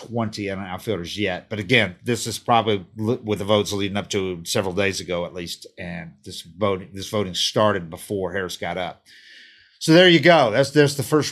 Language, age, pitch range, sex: English, 50-69, 110-145 Hz, male